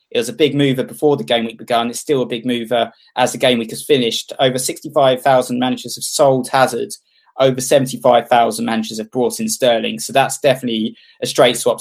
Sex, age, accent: male, 20-39, British